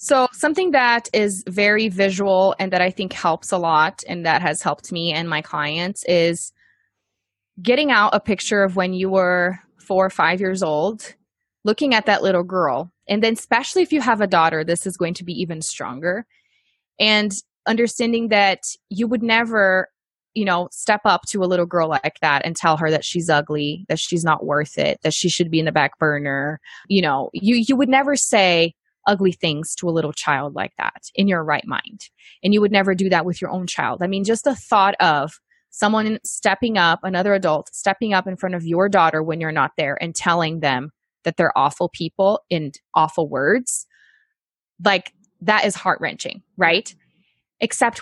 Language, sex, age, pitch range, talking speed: English, female, 20-39, 165-210 Hz, 195 wpm